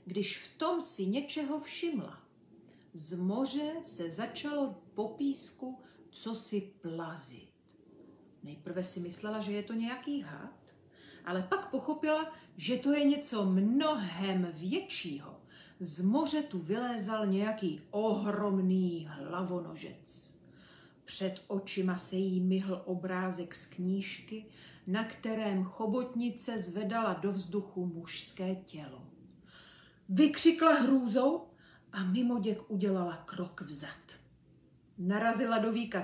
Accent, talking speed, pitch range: native, 105 wpm, 180-255 Hz